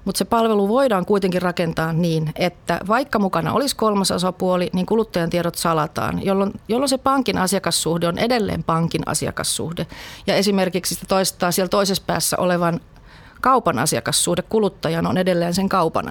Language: Finnish